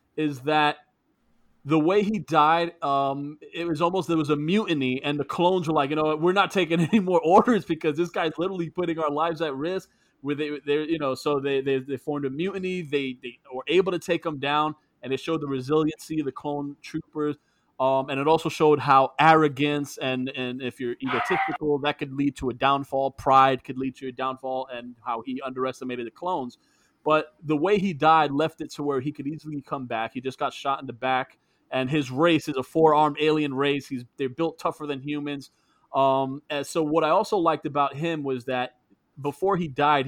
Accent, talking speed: American, 215 wpm